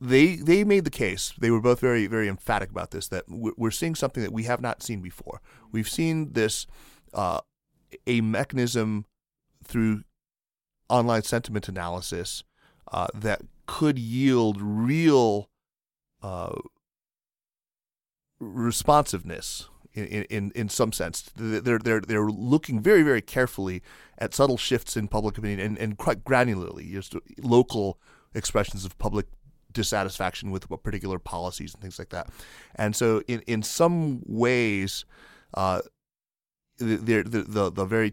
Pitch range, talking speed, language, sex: 100-120 Hz, 135 wpm, English, male